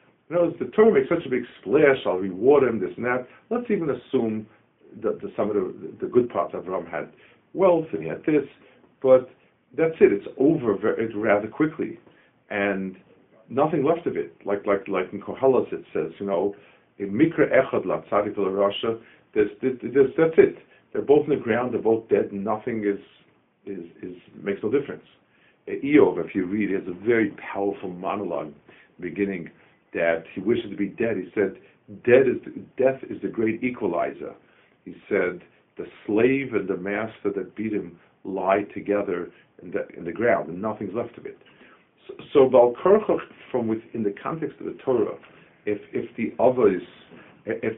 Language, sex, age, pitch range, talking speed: English, male, 50-69, 100-160 Hz, 170 wpm